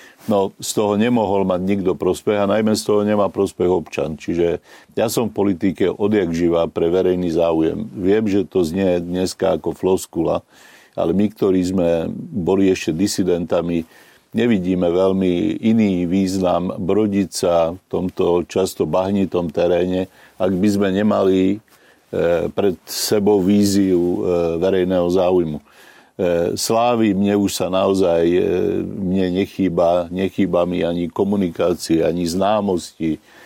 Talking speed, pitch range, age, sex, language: 125 wpm, 85-100 Hz, 50-69, male, Slovak